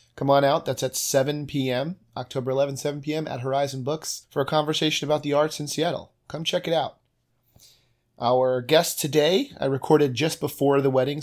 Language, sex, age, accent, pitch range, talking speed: English, male, 30-49, American, 125-140 Hz, 185 wpm